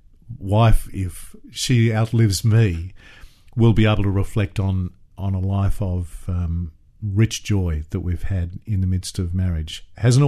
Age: 50-69